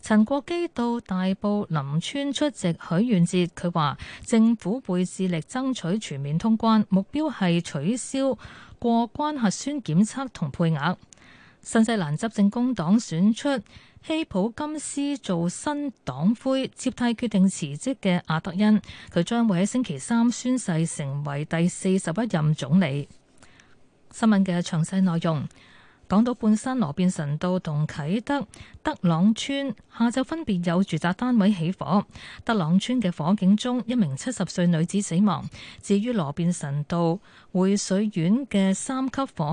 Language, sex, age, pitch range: Chinese, female, 20-39, 170-235 Hz